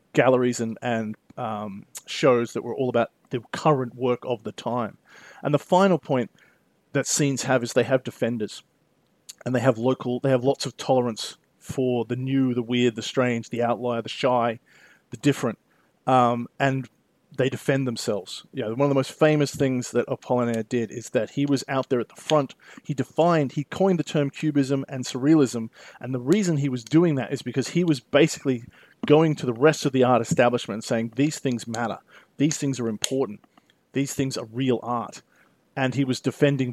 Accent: Australian